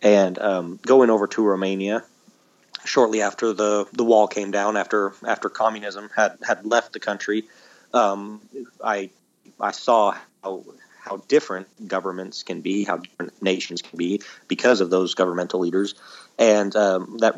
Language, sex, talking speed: English, male, 150 wpm